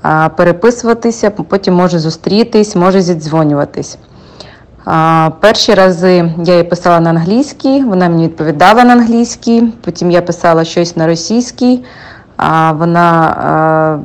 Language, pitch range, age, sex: English, 175-205 Hz, 20-39, female